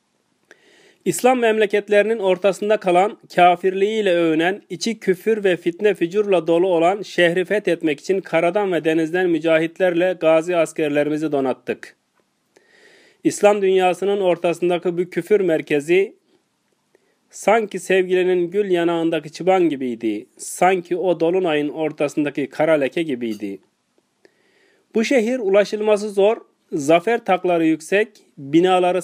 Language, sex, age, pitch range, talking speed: Turkish, male, 40-59, 165-210 Hz, 100 wpm